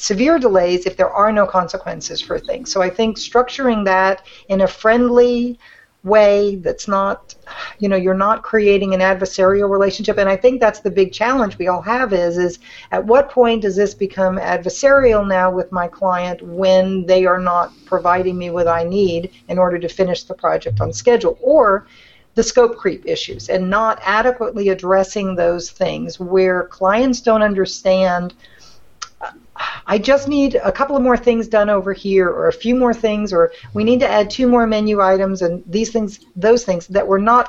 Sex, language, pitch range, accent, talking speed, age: female, English, 185-225 Hz, American, 185 wpm, 50-69